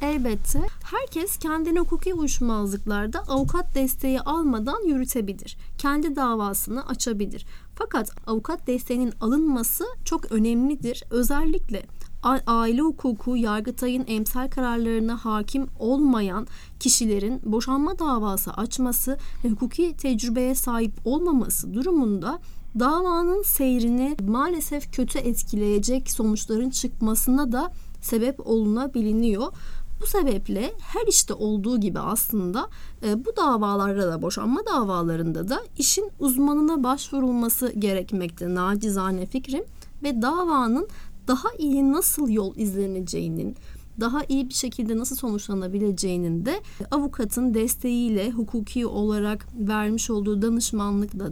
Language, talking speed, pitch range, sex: Turkish, 100 wpm, 215-275 Hz, female